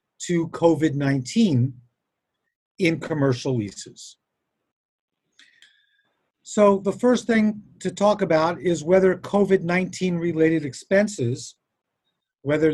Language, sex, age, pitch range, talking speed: English, male, 50-69, 150-195 Hz, 85 wpm